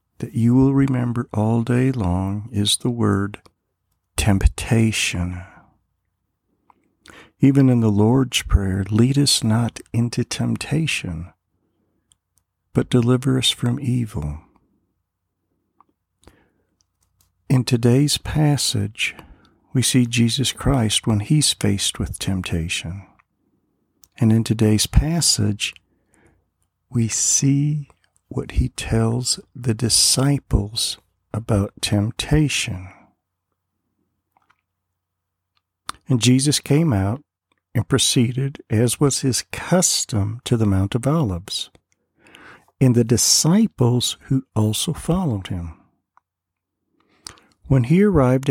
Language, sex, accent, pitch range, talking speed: English, male, American, 95-125 Hz, 95 wpm